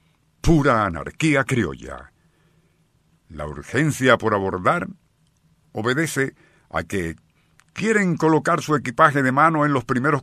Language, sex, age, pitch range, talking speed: Spanish, male, 60-79, 100-145 Hz, 110 wpm